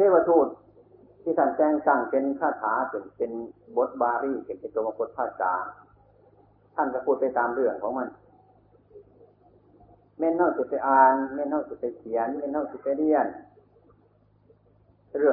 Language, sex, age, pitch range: Thai, male, 60-79, 110-175 Hz